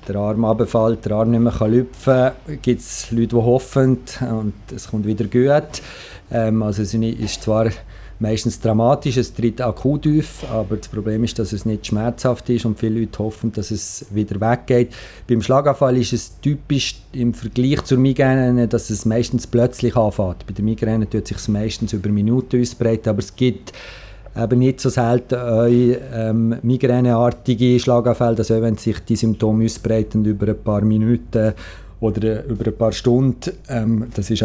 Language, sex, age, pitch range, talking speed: German, male, 50-69, 110-125 Hz, 175 wpm